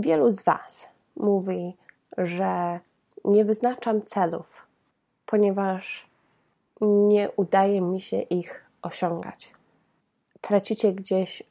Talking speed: 90 wpm